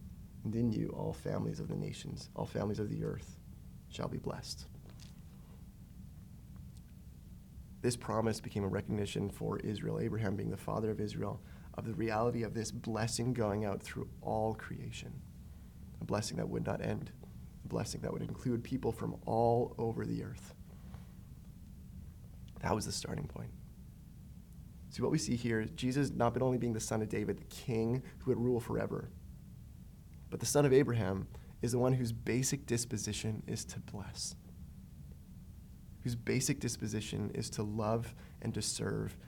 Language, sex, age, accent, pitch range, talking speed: English, male, 30-49, American, 100-125 Hz, 160 wpm